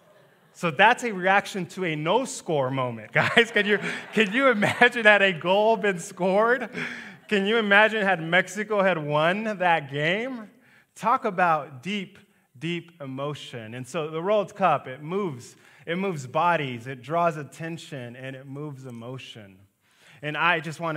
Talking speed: 155 wpm